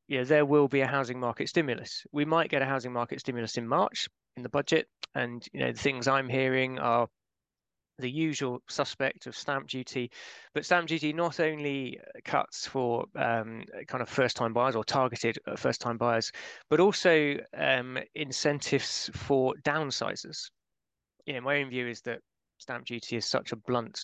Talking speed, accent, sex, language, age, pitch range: 175 wpm, British, male, English, 20-39, 120-145 Hz